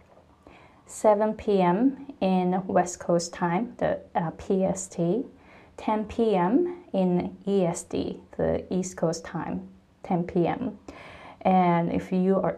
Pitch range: 175-210 Hz